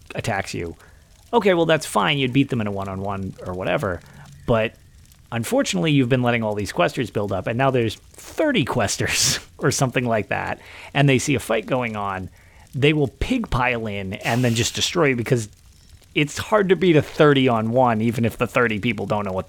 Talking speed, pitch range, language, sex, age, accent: 210 wpm, 90-130 Hz, English, male, 30-49, American